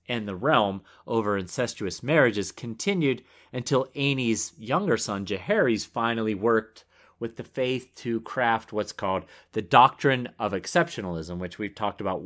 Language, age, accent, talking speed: English, 30-49, American, 140 wpm